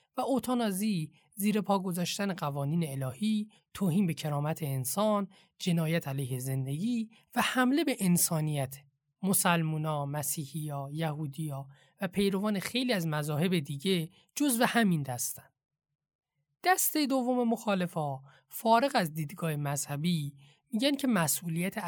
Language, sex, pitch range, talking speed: Persian, male, 150-220 Hz, 110 wpm